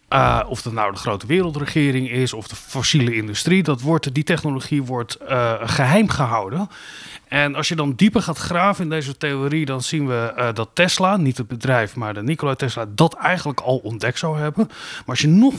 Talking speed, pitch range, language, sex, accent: 195 wpm, 125-175 Hz, Dutch, male, Dutch